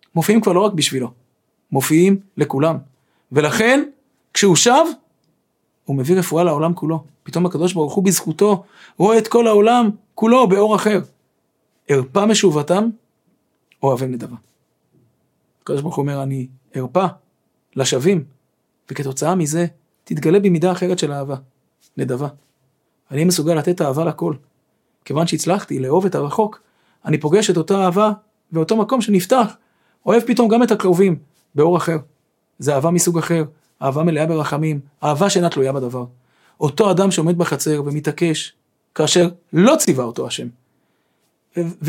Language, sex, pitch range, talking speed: Hebrew, male, 145-190 Hz, 130 wpm